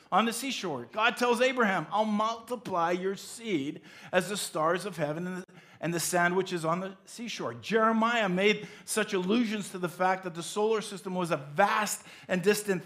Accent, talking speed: American, 180 wpm